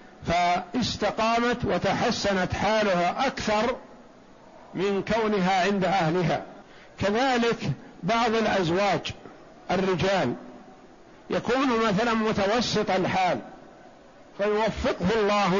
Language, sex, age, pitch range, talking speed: Arabic, male, 60-79, 190-225 Hz, 70 wpm